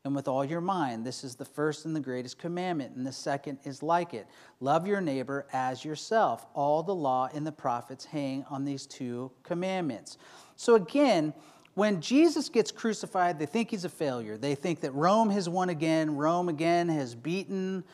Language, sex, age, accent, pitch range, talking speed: English, male, 40-59, American, 150-200 Hz, 190 wpm